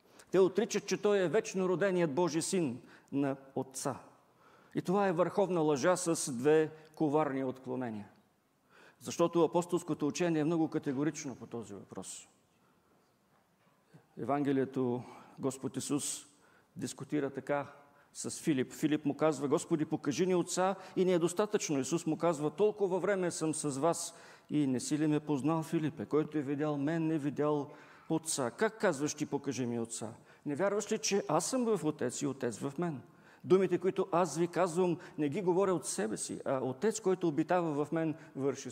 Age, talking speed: 50-69, 165 wpm